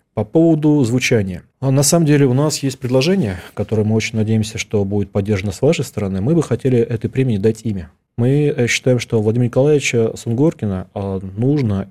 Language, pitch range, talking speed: Russian, 105-130 Hz, 170 wpm